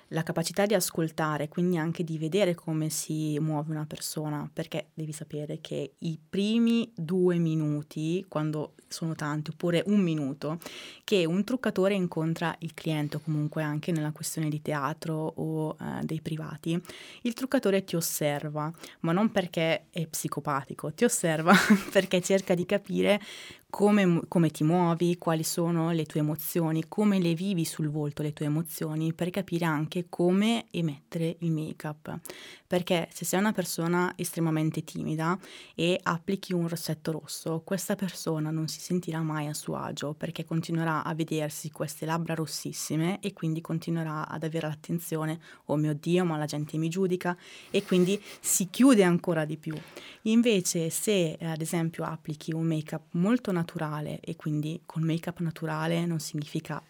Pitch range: 155-185 Hz